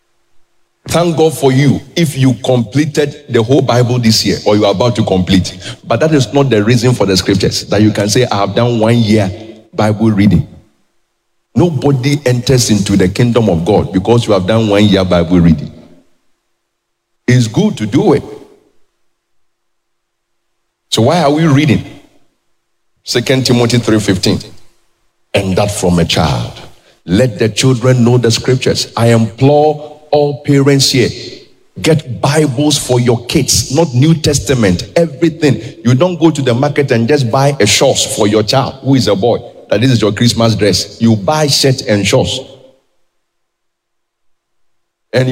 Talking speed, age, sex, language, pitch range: 160 wpm, 50-69, male, English, 110-145 Hz